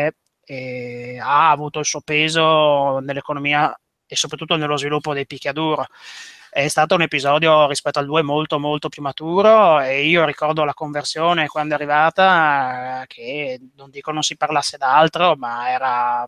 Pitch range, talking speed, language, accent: 140-155 Hz, 150 wpm, Italian, native